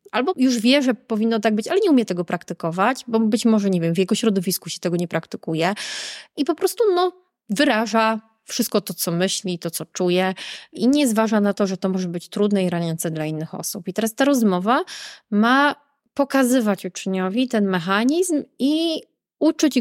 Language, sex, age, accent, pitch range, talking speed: Polish, female, 20-39, native, 185-260 Hz, 190 wpm